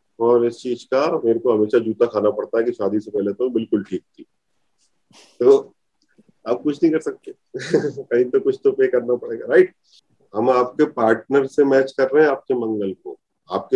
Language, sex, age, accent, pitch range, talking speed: Hindi, male, 30-49, native, 120-160 Hz, 195 wpm